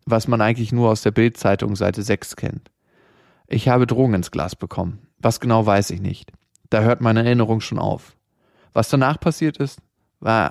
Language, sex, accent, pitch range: German, male, German, 105-130 Hz